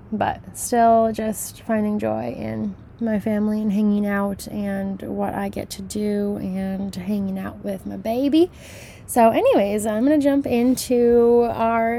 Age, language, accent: 20-39, English, American